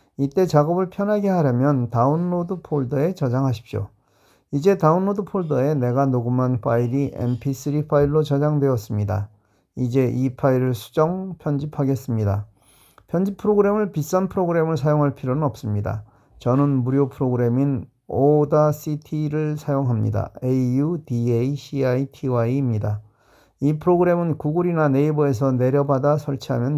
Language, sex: Korean, male